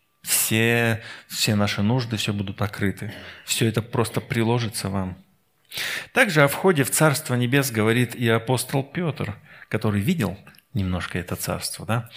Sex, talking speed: male, 135 wpm